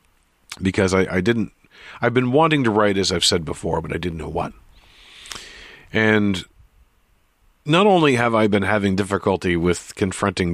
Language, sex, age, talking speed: English, male, 40-59, 160 wpm